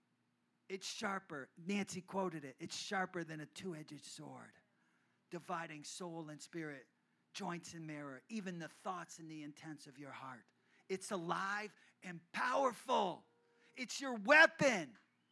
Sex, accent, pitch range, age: male, American, 175-265 Hz, 40-59